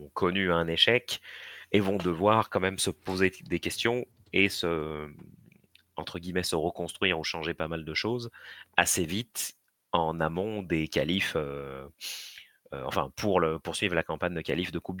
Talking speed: 160 wpm